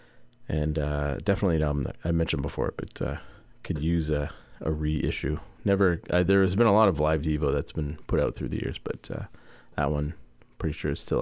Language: English